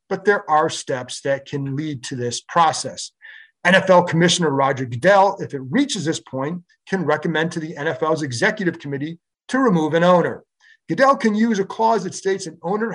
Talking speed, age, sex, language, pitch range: 180 wpm, 40-59, male, English, 145-195 Hz